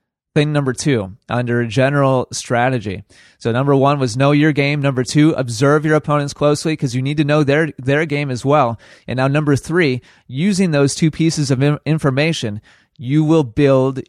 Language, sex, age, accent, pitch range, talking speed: English, male, 30-49, American, 125-150 Hz, 185 wpm